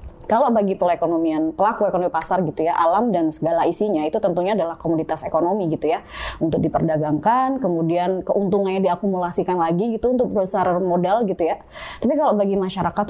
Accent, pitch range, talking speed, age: native, 165-215 Hz, 160 wpm, 20-39